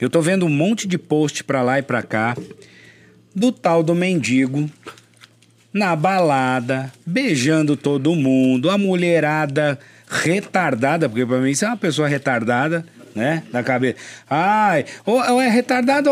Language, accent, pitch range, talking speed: Portuguese, Brazilian, 135-200 Hz, 145 wpm